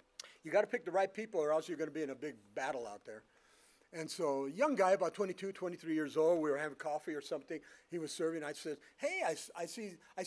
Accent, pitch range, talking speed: American, 160-225 Hz, 270 wpm